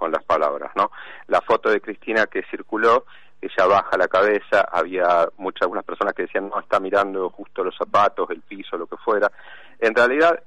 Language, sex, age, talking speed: Spanish, male, 40-59, 190 wpm